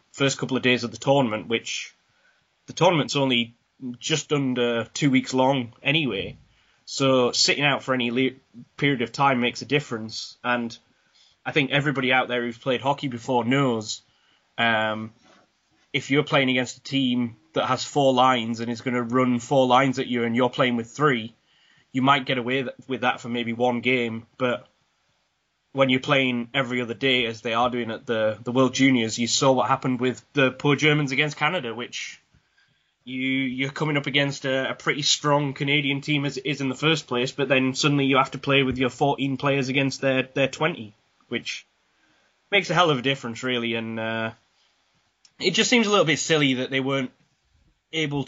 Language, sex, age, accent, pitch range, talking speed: English, male, 10-29, British, 120-140 Hz, 195 wpm